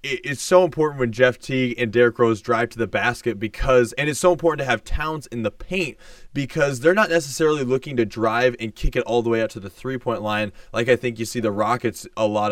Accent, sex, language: American, male, English